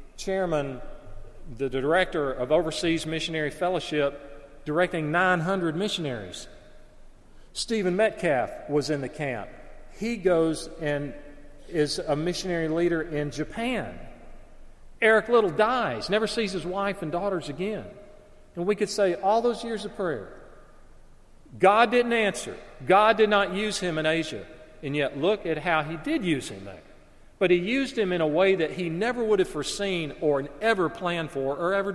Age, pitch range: 40-59, 145-200 Hz